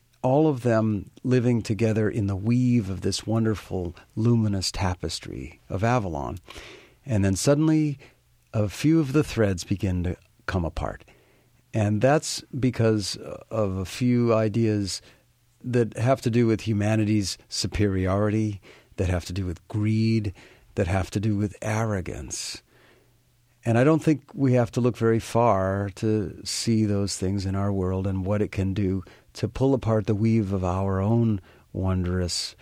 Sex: male